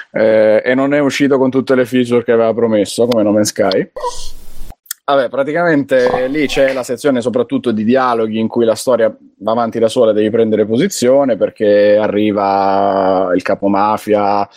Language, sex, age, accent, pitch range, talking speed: Italian, male, 30-49, native, 105-125 Hz, 170 wpm